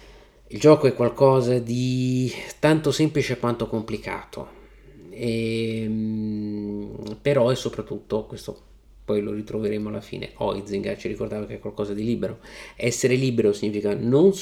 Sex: male